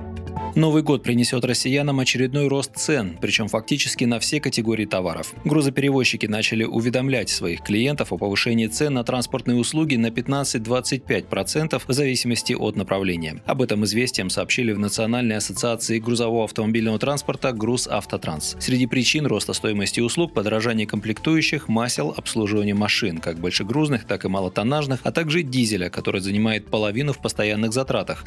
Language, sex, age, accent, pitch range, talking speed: Russian, male, 20-39, native, 100-125 Hz, 140 wpm